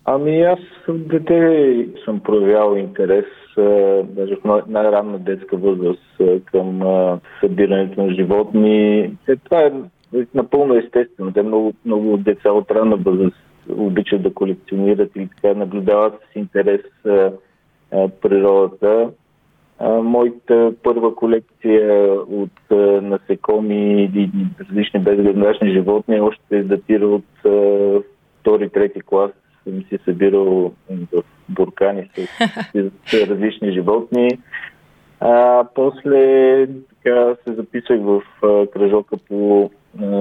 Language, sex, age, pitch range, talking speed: Bulgarian, male, 20-39, 95-115 Hz, 100 wpm